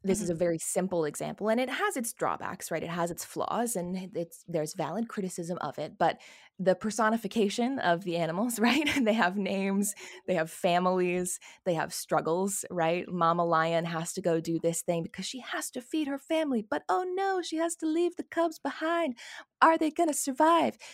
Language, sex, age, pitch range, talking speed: English, female, 20-39, 170-225 Hz, 200 wpm